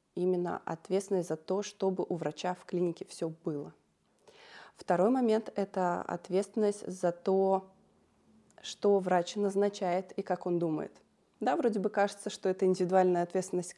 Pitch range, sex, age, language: 170-200 Hz, female, 20-39, Russian